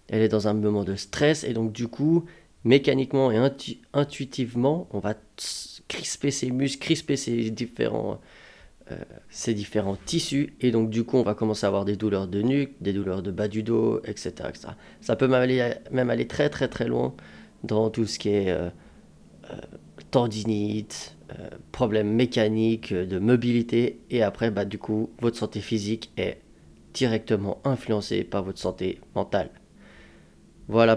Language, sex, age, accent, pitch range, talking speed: French, male, 30-49, French, 105-125 Hz, 160 wpm